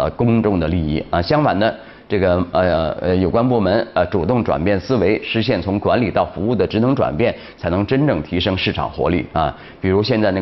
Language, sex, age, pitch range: Chinese, male, 30-49, 90-120 Hz